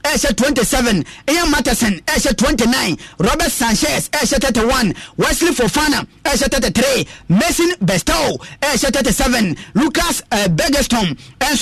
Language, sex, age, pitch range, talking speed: English, male, 30-49, 215-280 Hz, 105 wpm